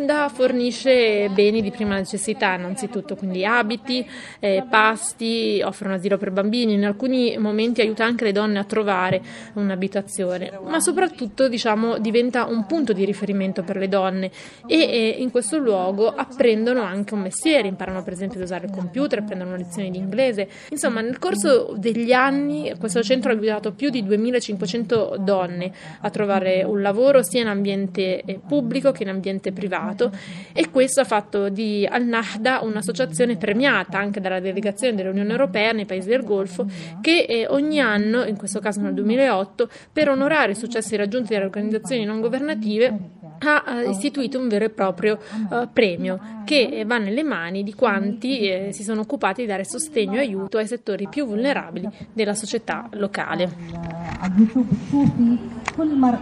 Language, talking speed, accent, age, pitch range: Italian, 155 wpm, native, 30-49, 195-245 Hz